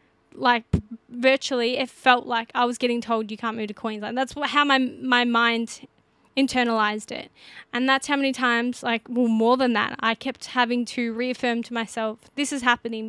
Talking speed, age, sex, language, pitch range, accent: 195 wpm, 10-29, female, English, 235-270 Hz, Australian